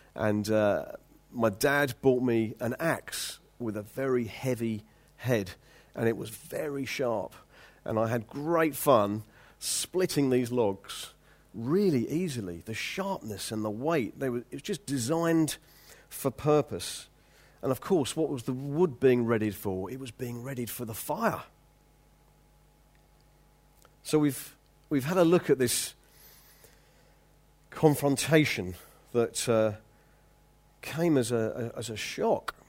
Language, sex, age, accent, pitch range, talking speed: English, male, 40-59, British, 115-160 Hz, 140 wpm